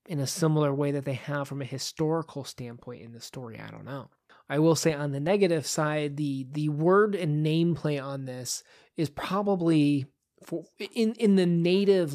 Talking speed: 195 wpm